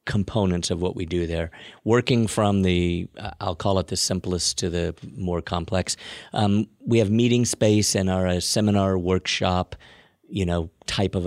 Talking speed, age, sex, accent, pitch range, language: 170 wpm, 50-69, male, American, 90-105 Hz, English